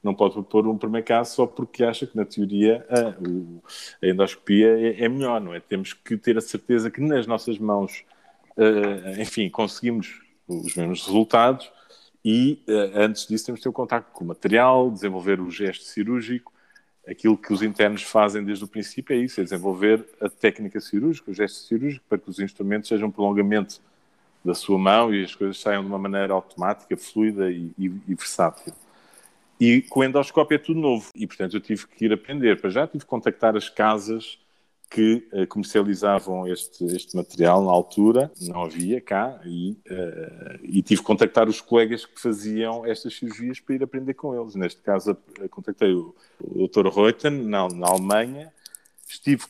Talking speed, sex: 175 wpm, male